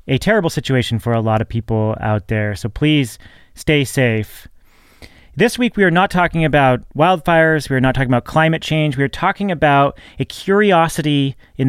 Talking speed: 185 wpm